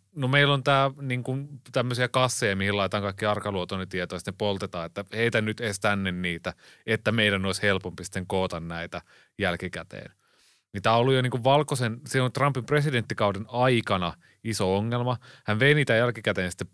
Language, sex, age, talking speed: Finnish, male, 30-49, 160 wpm